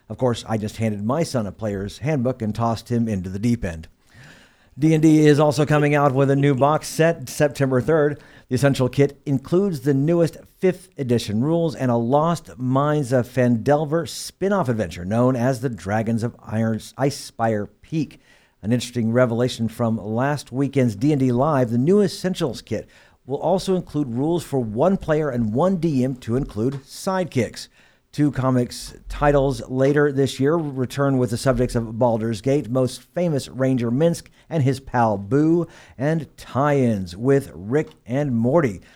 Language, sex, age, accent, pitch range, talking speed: English, male, 50-69, American, 115-150 Hz, 165 wpm